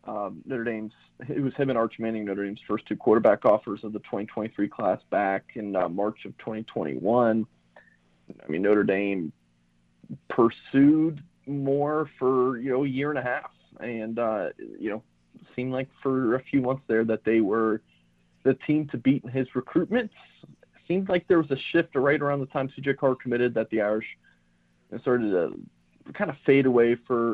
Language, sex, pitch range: English, male, 110-135 Hz